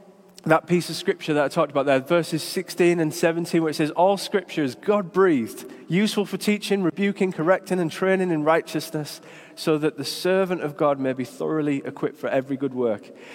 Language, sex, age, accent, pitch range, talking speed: English, male, 20-39, British, 170-205 Hz, 195 wpm